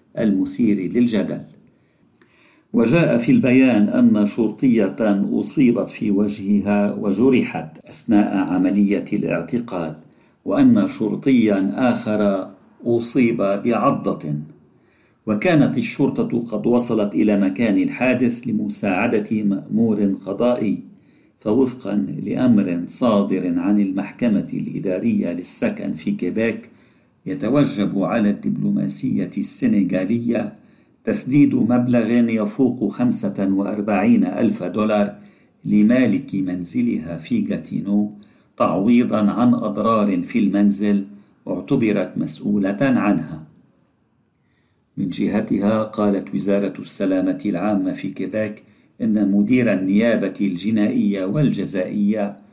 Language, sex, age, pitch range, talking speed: Arabic, male, 50-69, 100-120 Hz, 85 wpm